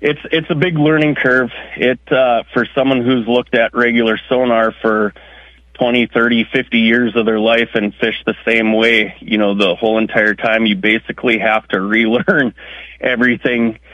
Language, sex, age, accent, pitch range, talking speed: English, male, 30-49, American, 105-120 Hz, 170 wpm